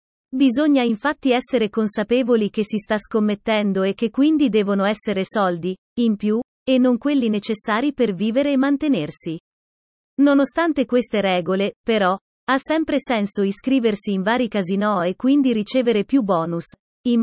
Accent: native